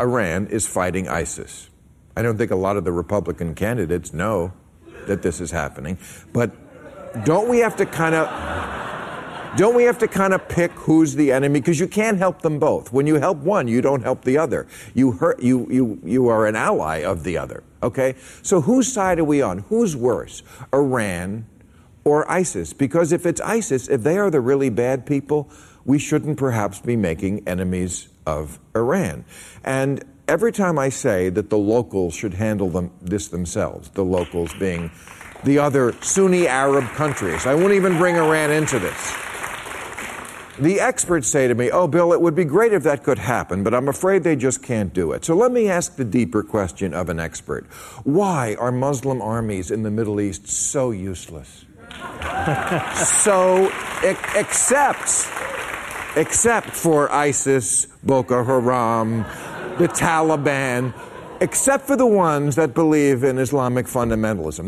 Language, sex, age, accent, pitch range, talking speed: English, male, 50-69, American, 105-165 Hz, 170 wpm